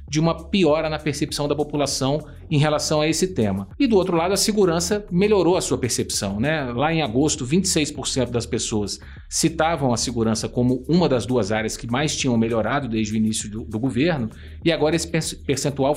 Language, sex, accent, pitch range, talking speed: Portuguese, male, Brazilian, 120-165 Hz, 190 wpm